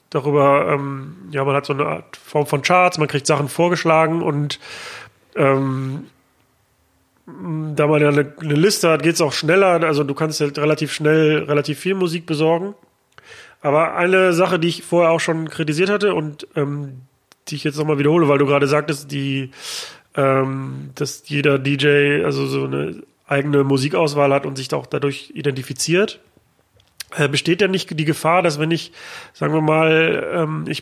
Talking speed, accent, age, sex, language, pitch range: 170 wpm, German, 30-49, male, German, 145-170 Hz